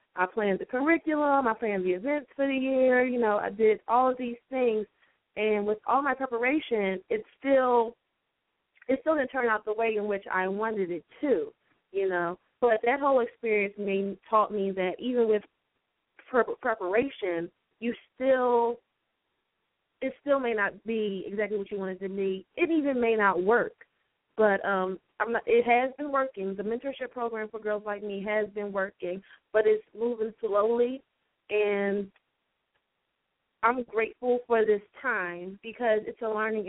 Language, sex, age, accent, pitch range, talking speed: English, female, 20-39, American, 195-240 Hz, 165 wpm